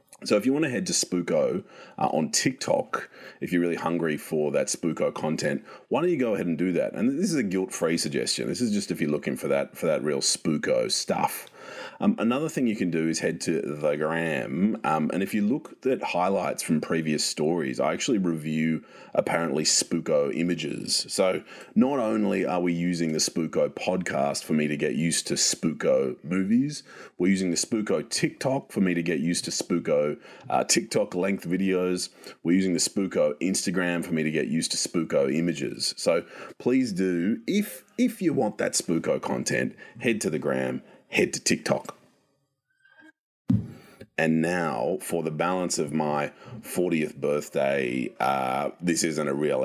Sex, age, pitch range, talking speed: male, 30-49, 75-95 Hz, 180 wpm